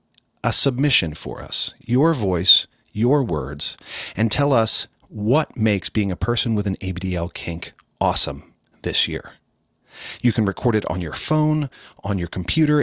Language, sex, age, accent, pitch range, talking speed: English, male, 40-59, American, 100-130 Hz, 155 wpm